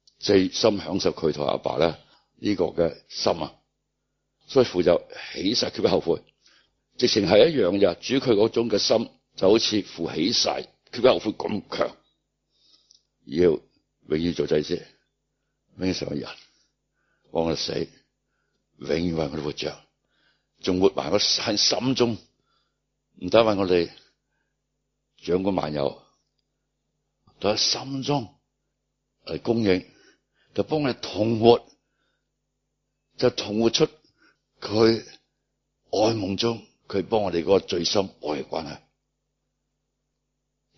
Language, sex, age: Chinese, male, 60-79